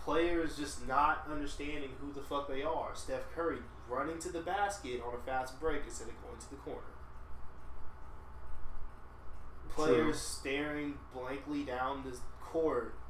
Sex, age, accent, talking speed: male, 20-39, American, 140 wpm